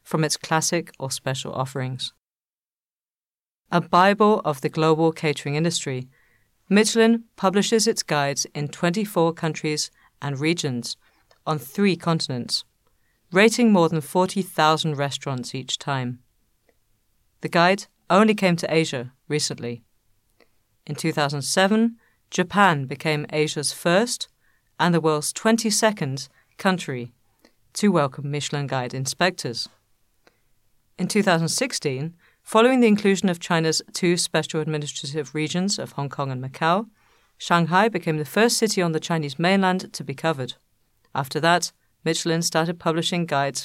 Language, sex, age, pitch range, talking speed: English, female, 50-69, 140-180 Hz, 120 wpm